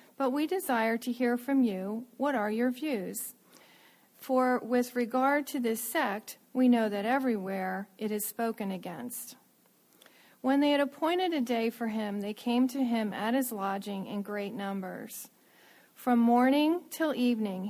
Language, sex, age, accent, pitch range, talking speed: English, female, 40-59, American, 210-260 Hz, 160 wpm